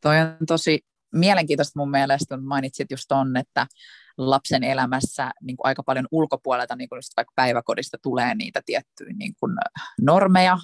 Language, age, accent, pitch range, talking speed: Finnish, 20-39, native, 130-155 Hz, 130 wpm